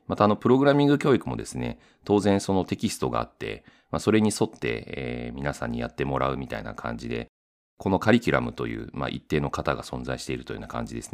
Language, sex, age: Japanese, male, 40-59